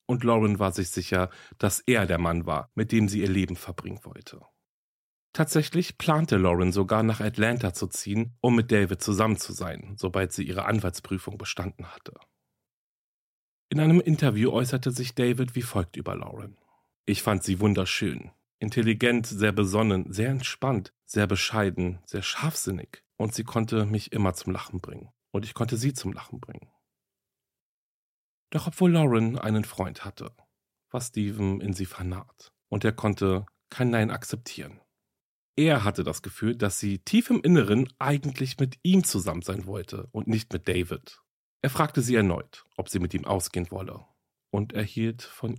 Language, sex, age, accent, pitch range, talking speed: German, male, 40-59, German, 95-125 Hz, 165 wpm